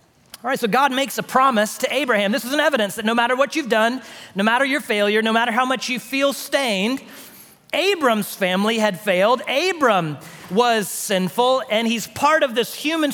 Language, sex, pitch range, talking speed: English, male, 205-265 Hz, 195 wpm